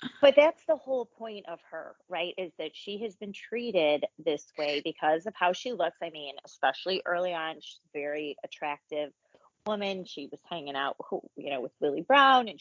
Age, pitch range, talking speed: 30-49, 150-200 Hz, 195 wpm